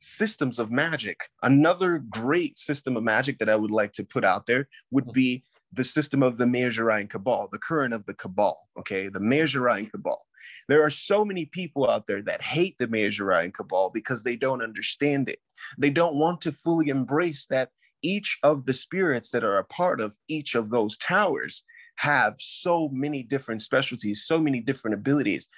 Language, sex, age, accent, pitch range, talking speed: English, male, 30-49, American, 125-165 Hz, 190 wpm